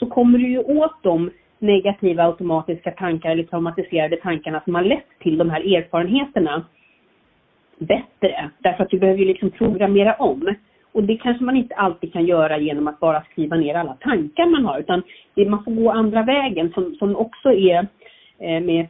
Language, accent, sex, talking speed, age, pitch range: Swedish, native, female, 175 wpm, 40-59, 165-215 Hz